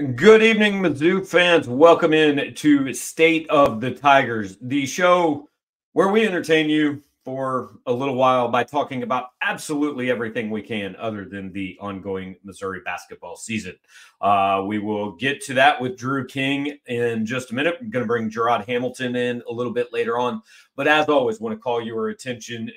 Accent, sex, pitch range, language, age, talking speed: American, male, 110-150 Hz, English, 40-59, 180 wpm